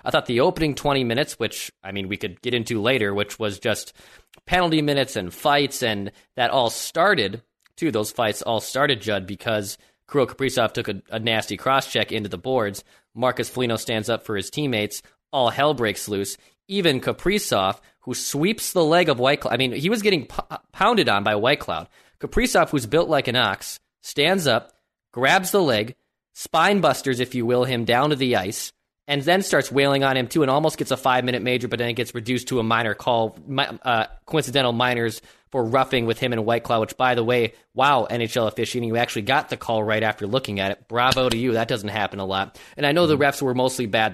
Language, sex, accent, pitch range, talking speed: English, male, American, 110-140 Hz, 215 wpm